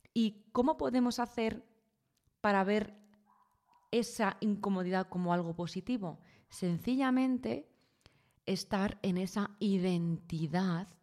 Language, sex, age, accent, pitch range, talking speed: Spanish, female, 20-39, Spanish, 170-210 Hz, 85 wpm